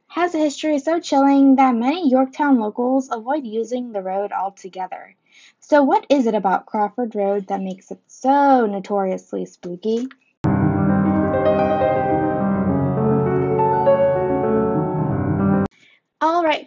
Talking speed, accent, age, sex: 100 wpm, American, 10-29, female